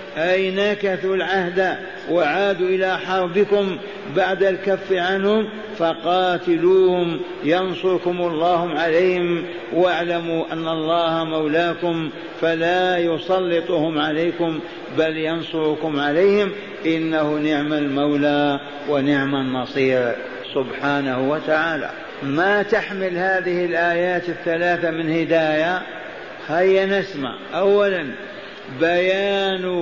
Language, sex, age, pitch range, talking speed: Arabic, male, 60-79, 160-195 Hz, 85 wpm